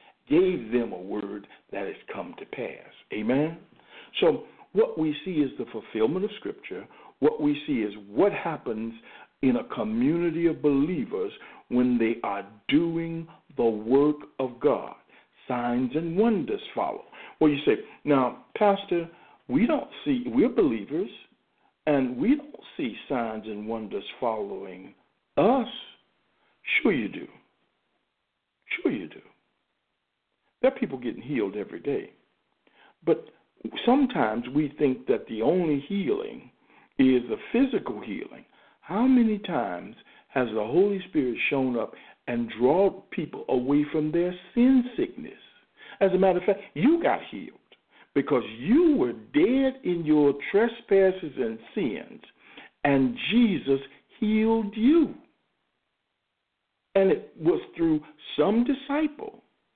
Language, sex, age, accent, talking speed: English, male, 60-79, American, 130 wpm